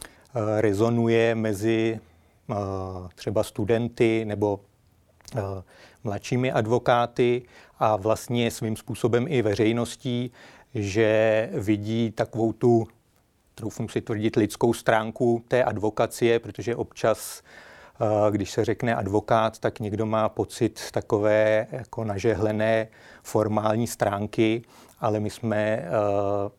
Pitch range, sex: 105-115 Hz, male